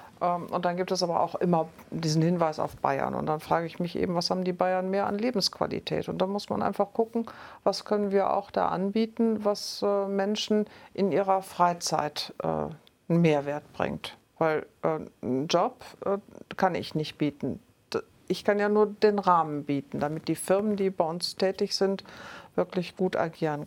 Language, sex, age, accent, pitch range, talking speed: German, female, 50-69, German, 165-200 Hz, 175 wpm